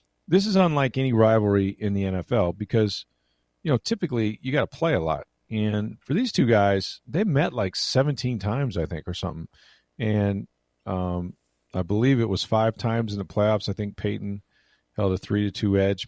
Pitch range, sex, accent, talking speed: 100-125 Hz, male, American, 185 wpm